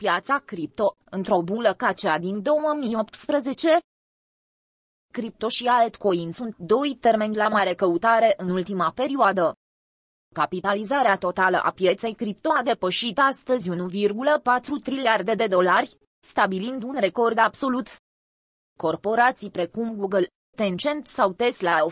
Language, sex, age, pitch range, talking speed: Romanian, female, 20-39, 190-245 Hz, 120 wpm